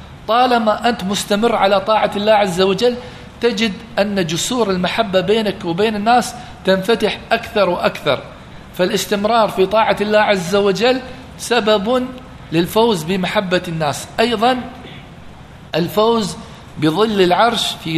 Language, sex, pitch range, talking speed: English, male, 170-220 Hz, 110 wpm